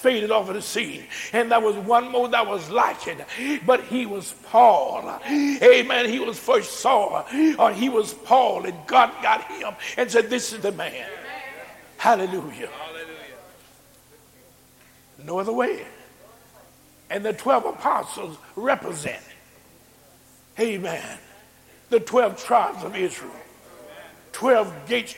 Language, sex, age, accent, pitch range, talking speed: English, male, 60-79, American, 230-285 Hz, 125 wpm